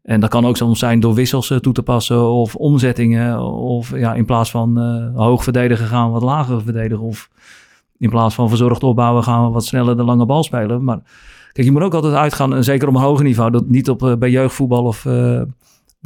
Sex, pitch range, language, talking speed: male, 120-135 Hz, Dutch, 225 wpm